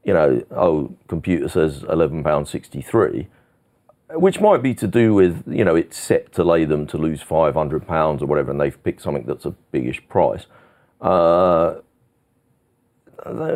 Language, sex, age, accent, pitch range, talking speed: English, male, 40-59, British, 80-120 Hz, 170 wpm